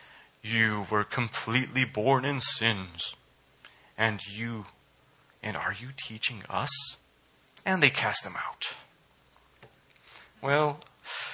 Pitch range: 105-120 Hz